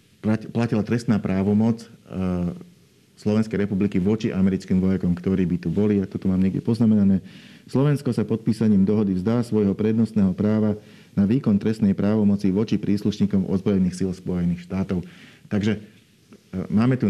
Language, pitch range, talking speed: Slovak, 95-110 Hz, 140 wpm